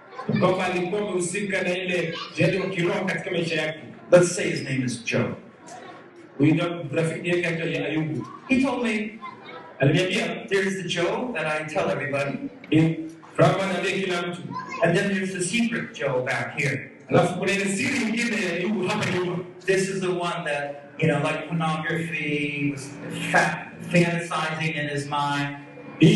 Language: Swahili